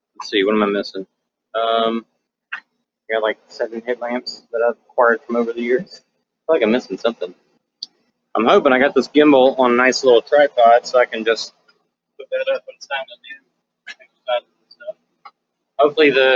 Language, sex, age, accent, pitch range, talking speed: English, male, 30-49, American, 120-155 Hz, 175 wpm